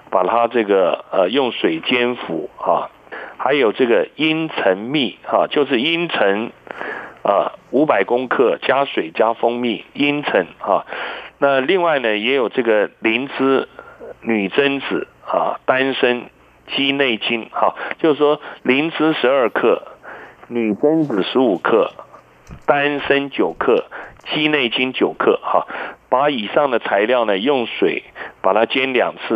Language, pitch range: Chinese, 110-140 Hz